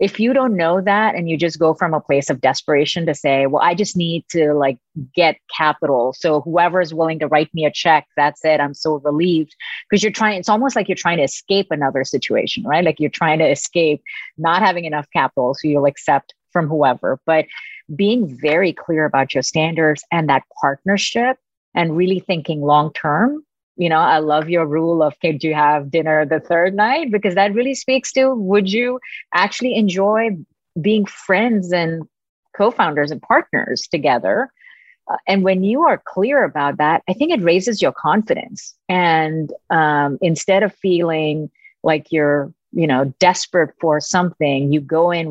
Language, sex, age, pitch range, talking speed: English, female, 30-49, 150-195 Hz, 185 wpm